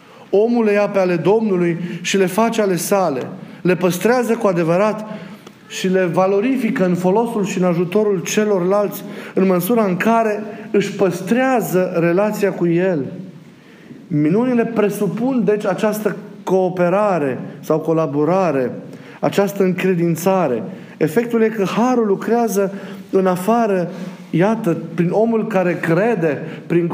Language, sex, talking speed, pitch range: Romanian, male, 125 wpm, 165-205 Hz